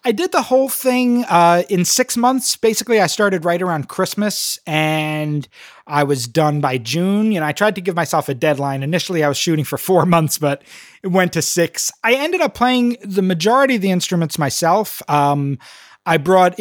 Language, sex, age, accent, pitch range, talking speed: English, male, 30-49, American, 145-185 Hz, 200 wpm